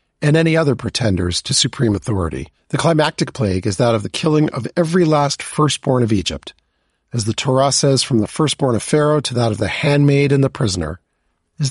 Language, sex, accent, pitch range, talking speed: English, male, American, 110-150 Hz, 200 wpm